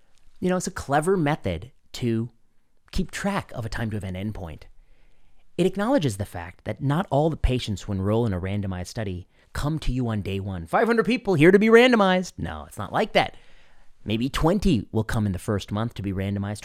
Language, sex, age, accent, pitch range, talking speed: English, male, 30-49, American, 105-170 Hz, 210 wpm